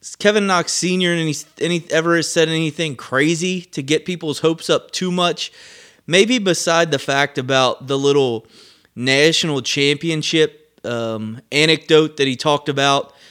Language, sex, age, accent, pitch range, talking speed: English, male, 20-39, American, 125-155 Hz, 140 wpm